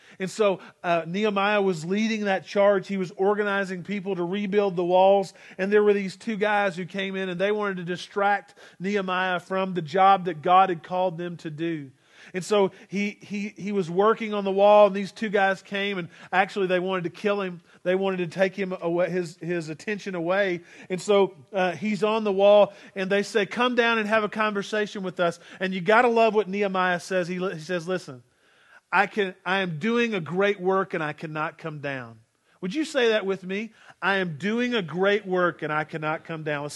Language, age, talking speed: English, 40-59, 215 wpm